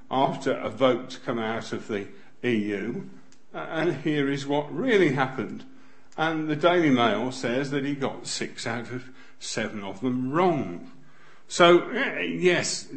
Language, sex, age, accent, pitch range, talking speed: English, male, 50-69, British, 125-160 Hz, 155 wpm